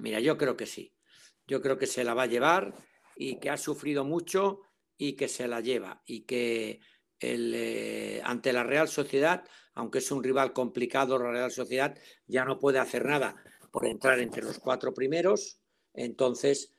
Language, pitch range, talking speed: Spanish, 125-145 Hz, 180 wpm